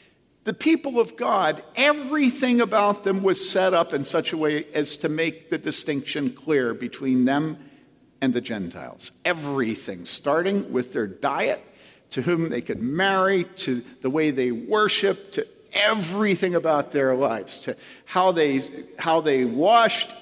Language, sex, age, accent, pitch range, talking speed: English, male, 50-69, American, 135-205 Hz, 150 wpm